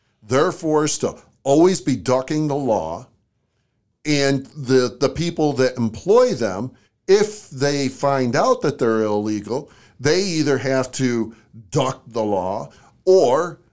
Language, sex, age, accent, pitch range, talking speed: English, male, 50-69, American, 115-155 Hz, 130 wpm